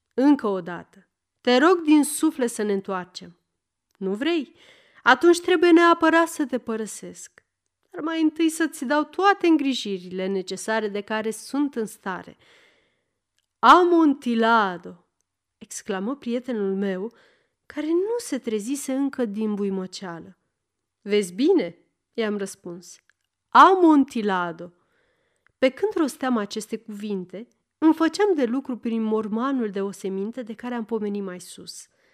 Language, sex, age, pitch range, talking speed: Romanian, female, 30-49, 195-300 Hz, 125 wpm